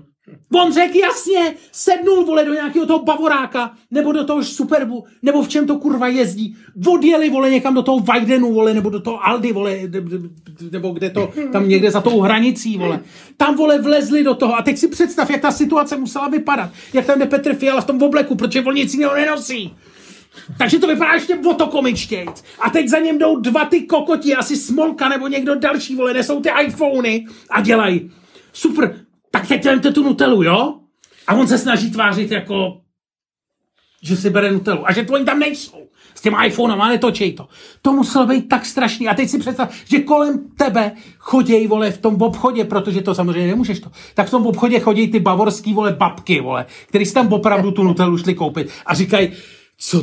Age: 40-59